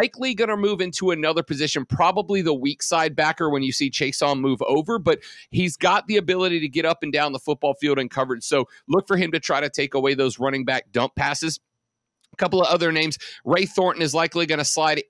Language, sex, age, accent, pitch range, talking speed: English, male, 40-59, American, 145-180 Hz, 240 wpm